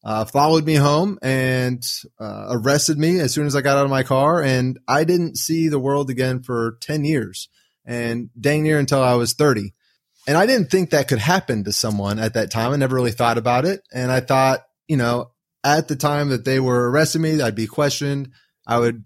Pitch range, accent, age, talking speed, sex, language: 120-155 Hz, American, 30-49, 220 wpm, male, English